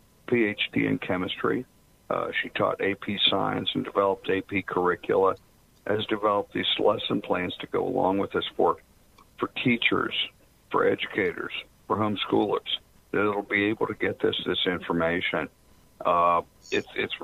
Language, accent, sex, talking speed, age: English, American, male, 145 wpm, 50-69